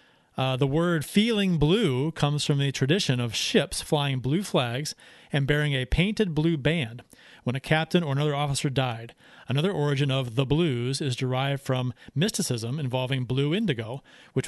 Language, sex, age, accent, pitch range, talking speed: English, male, 40-59, American, 135-185 Hz, 165 wpm